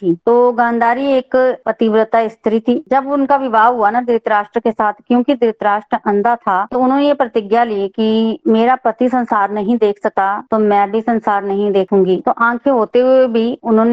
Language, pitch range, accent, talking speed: Hindi, 205-235 Hz, native, 95 wpm